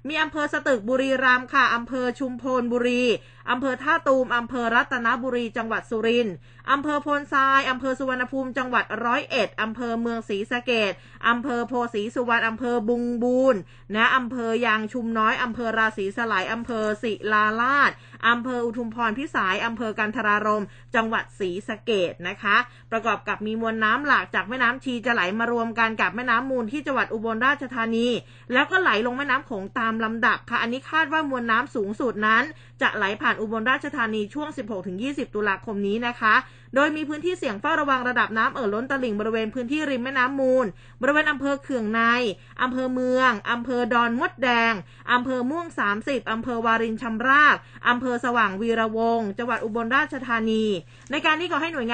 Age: 20-39